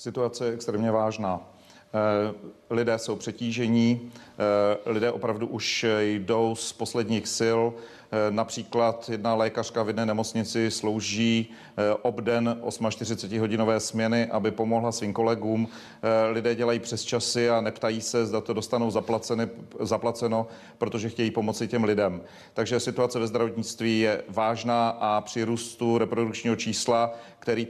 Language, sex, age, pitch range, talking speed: Czech, male, 40-59, 110-120 Hz, 125 wpm